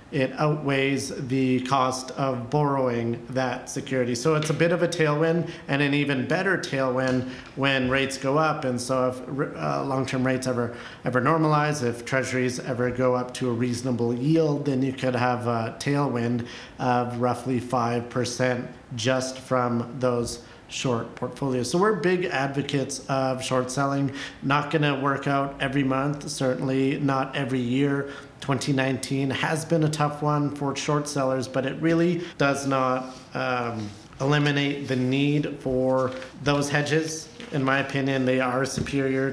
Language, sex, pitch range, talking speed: English, male, 125-140 Hz, 155 wpm